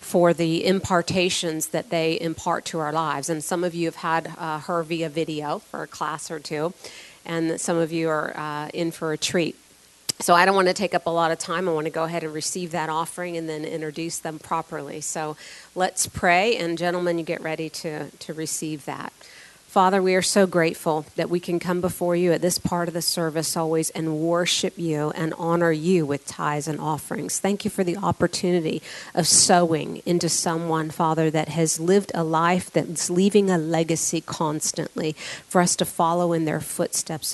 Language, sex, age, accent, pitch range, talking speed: English, female, 40-59, American, 155-175 Hz, 205 wpm